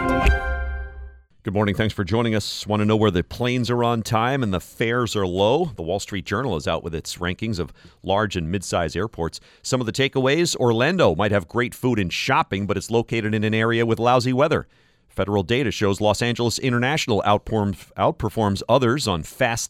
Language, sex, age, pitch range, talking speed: English, male, 40-59, 95-120 Hz, 195 wpm